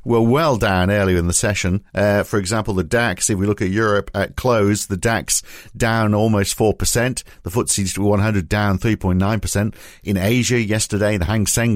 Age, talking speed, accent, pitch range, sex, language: 50-69, 180 wpm, British, 95-115 Hz, male, English